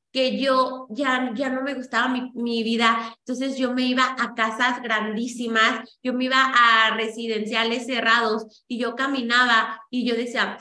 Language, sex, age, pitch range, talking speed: Spanish, female, 30-49, 235-270 Hz, 165 wpm